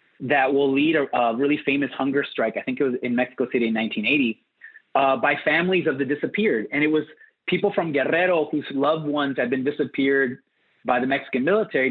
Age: 30-49